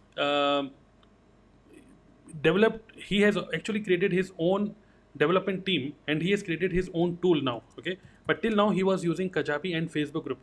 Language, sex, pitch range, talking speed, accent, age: Hindi, male, 140-175 Hz, 165 wpm, native, 30-49